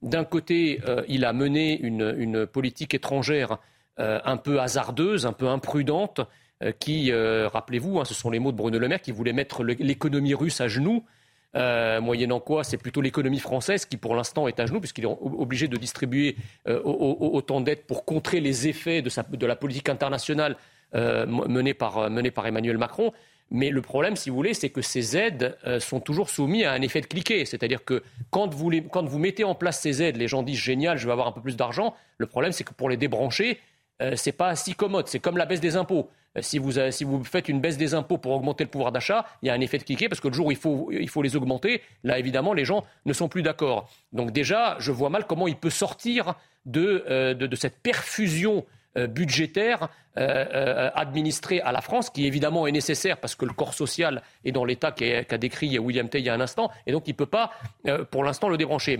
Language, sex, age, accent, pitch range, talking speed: French, male, 40-59, French, 125-165 Hz, 235 wpm